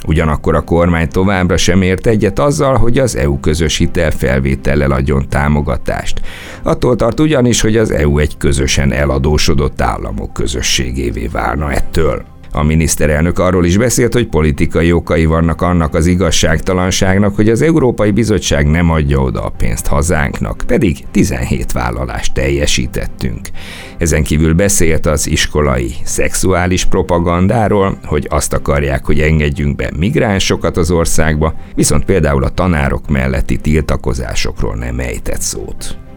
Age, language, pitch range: 60-79, Hungarian, 75-95 Hz